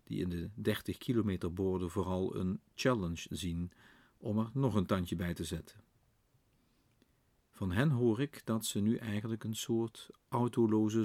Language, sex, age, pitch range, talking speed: Dutch, male, 50-69, 95-115 Hz, 150 wpm